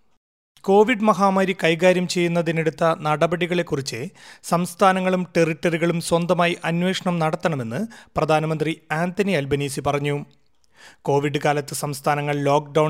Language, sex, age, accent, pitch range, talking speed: Malayalam, male, 30-49, native, 150-180 Hz, 85 wpm